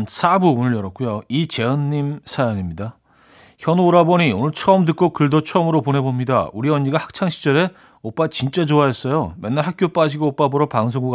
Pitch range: 120-160 Hz